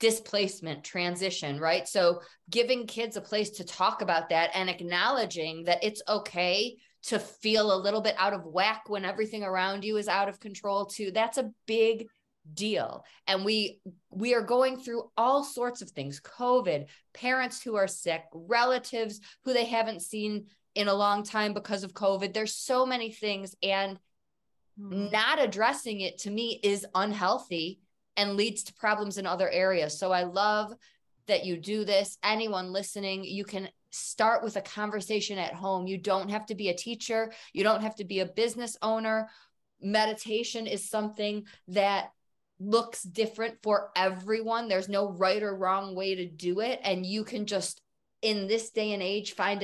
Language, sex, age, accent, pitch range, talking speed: English, female, 20-39, American, 190-220 Hz, 175 wpm